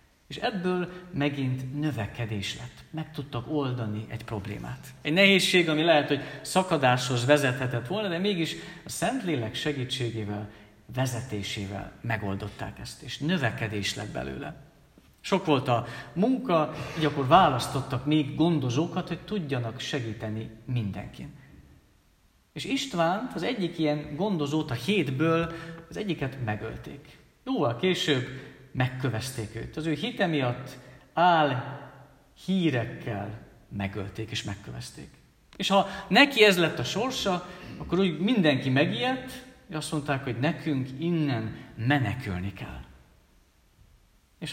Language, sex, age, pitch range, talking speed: Hungarian, male, 50-69, 115-165 Hz, 115 wpm